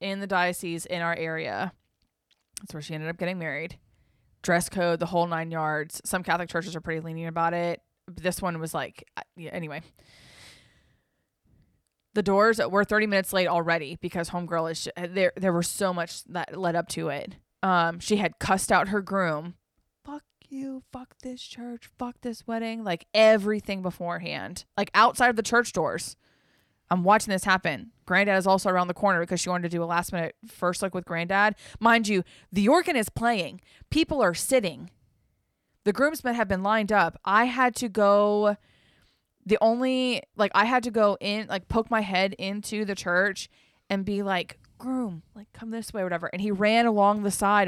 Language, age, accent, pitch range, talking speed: English, 20-39, American, 175-220 Hz, 190 wpm